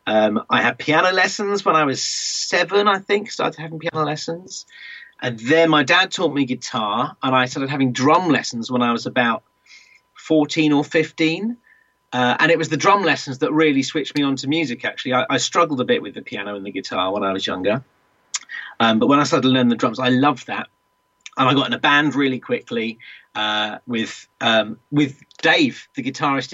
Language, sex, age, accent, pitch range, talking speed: English, male, 30-49, British, 120-155 Hz, 210 wpm